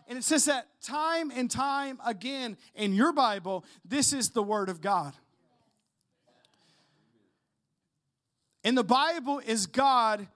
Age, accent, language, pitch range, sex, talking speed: 40-59, American, English, 205-270 Hz, male, 125 wpm